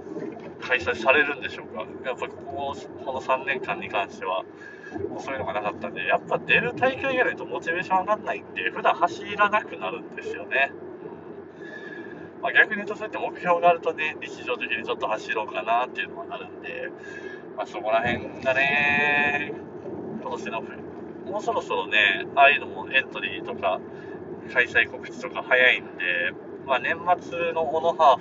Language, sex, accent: Japanese, male, native